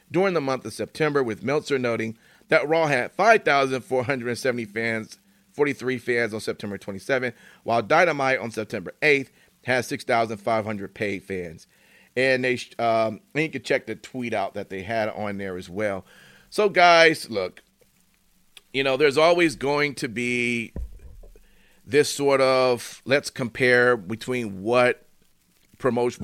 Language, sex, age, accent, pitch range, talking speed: English, male, 40-59, American, 115-145 Hz, 140 wpm